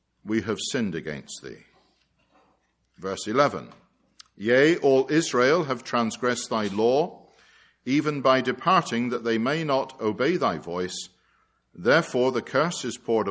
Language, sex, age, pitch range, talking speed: English, male, 50-69, 110-150 Hz, 130 wpm